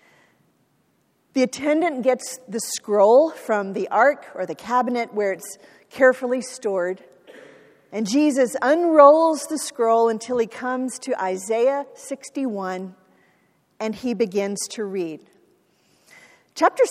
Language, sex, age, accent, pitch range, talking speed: English, female, 40-59, American, 220-295 Hz, 115 wpm